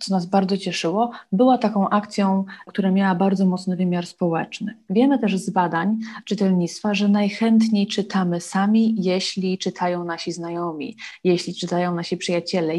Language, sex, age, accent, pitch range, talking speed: Polish, female, 30-49, native, 175-210 Hz, 140 wpm